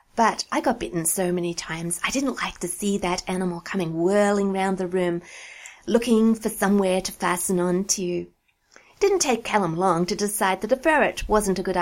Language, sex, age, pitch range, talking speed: English, female, 30-49, 180-220 Hz, 200 wpm